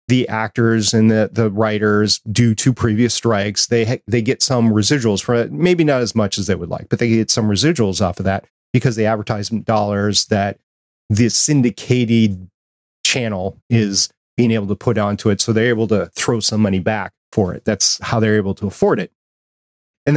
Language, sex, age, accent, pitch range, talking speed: English, male, 30-49, American, 100-130 Hz, 200 wpm